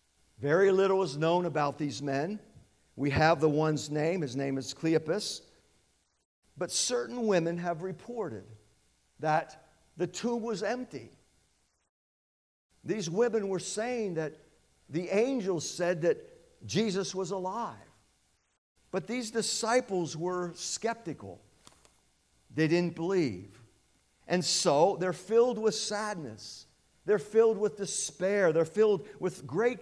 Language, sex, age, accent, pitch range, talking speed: English, male, 50-69, American, 140-210 Hz, 120 wpm